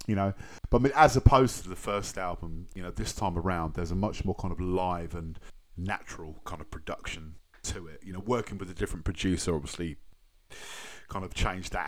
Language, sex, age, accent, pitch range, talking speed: English, male, 40-59, British, 85-100 Hz, 200 wpm